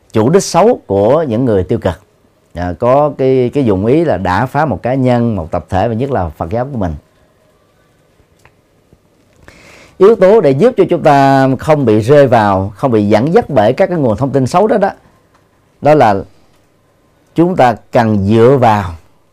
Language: Vietnamese